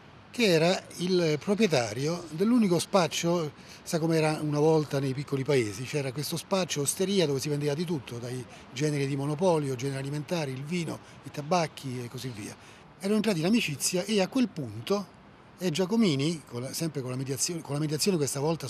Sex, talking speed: male, 180 wpm